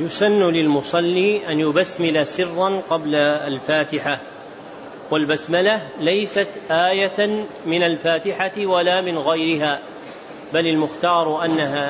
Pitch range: 165-200 Hz